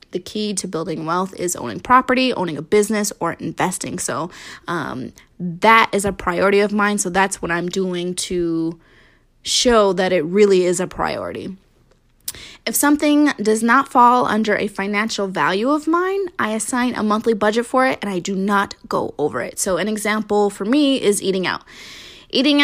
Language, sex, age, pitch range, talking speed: English, female, 20-39, 190-245 Hz, 180 wpm